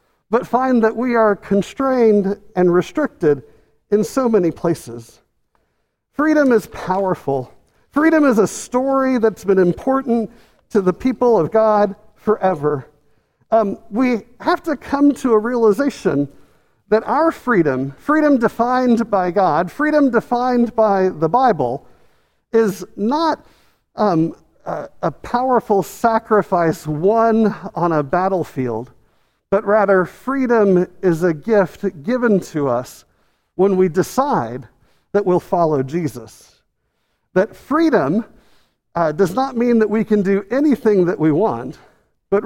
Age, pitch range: 50-69, 180-245 Hz